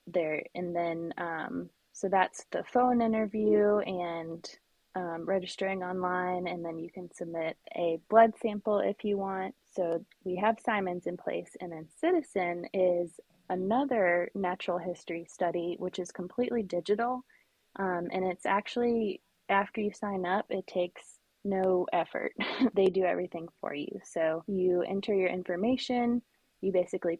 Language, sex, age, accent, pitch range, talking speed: English, female, 20-39, American, 170-205 Hz, 145 wpm